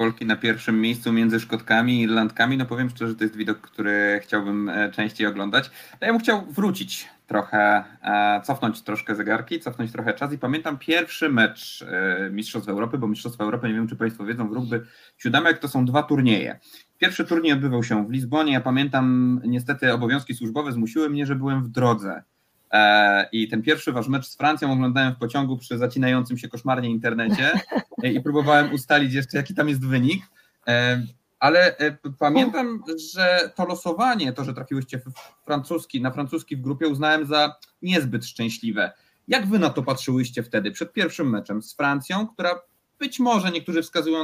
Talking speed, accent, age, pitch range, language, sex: 170 wpm, native, 30-49, 115-150 Hz, Polish, male